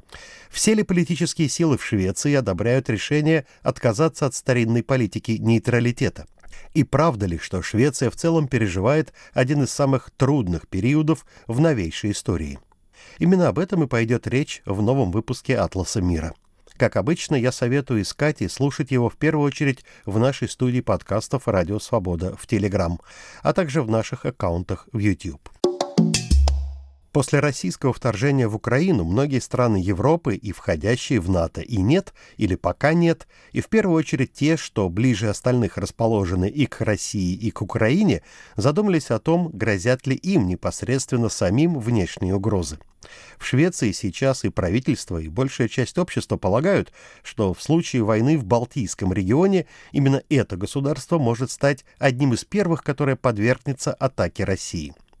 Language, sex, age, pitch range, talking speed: Russian, male, 50-69, 100-145 Hz, 150 wpm